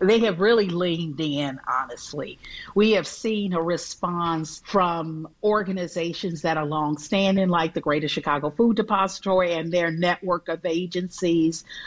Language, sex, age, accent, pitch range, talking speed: English, female, 50-69, American, 170-200 Hz, 135 wpm